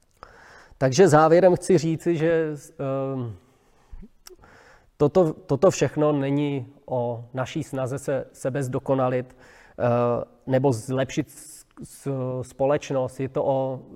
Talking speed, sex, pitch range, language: 105 wpm, male, 125-145 Hz, Czech